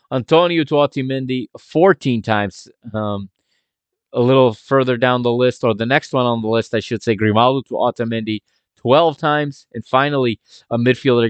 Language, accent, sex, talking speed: English, American, male, 165 wpm